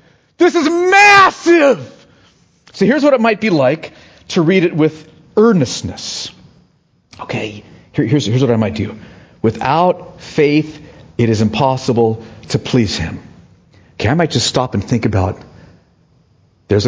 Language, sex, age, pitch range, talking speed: English, male, 40-59, 135-225 Hz, 140 wpm